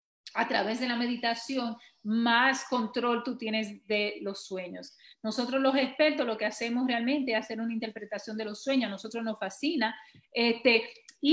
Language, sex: Spanish, female